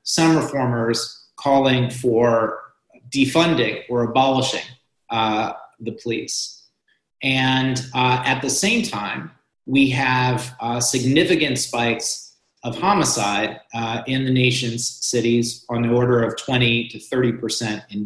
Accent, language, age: American, English, 30-49